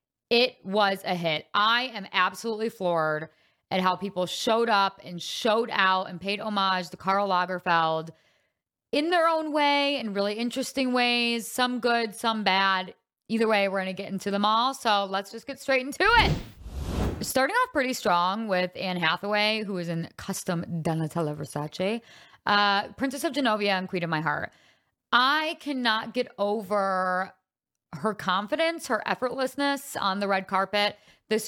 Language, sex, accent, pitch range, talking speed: English, female, American, 180-230 Hz, 160 wpm